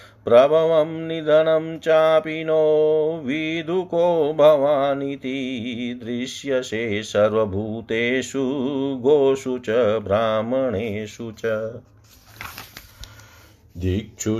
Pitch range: 115-150 Hz